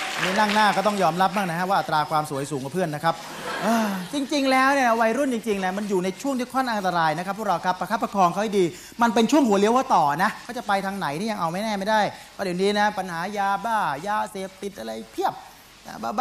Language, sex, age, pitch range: Thai, male, 30-49, 190-265 Hz